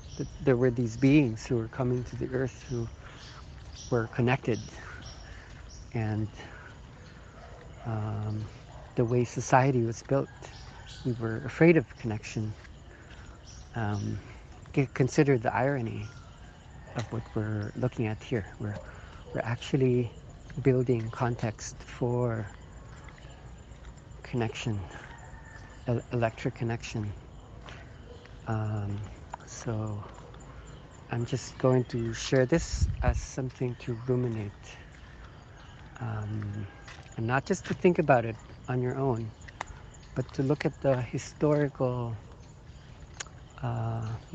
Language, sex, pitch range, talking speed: English, male, 110-130 Hz, 100 wpm